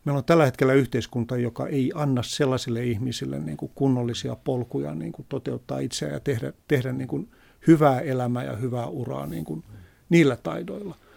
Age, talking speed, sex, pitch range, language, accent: 50-69, 150 wpm, male, 120-155 Hz, Finnish, native